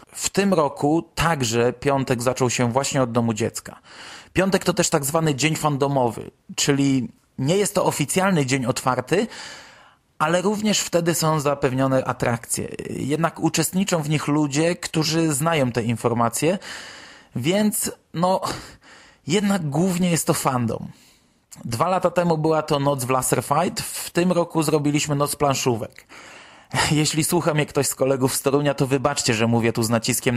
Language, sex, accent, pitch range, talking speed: Polish, male, native, 130-165 Hz, 150 wpm